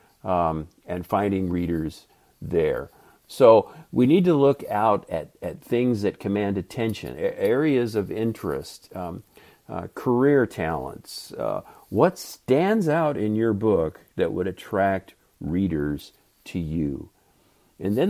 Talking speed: 135 wpm